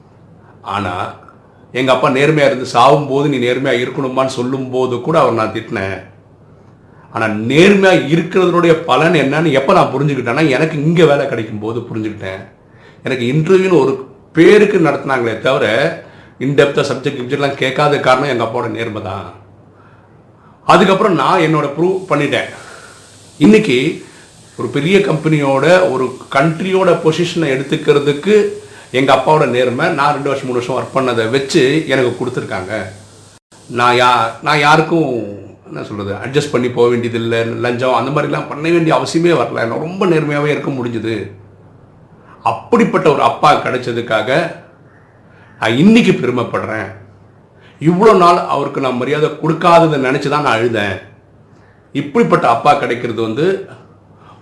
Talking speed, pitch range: 95 wpm, 115-155 Hz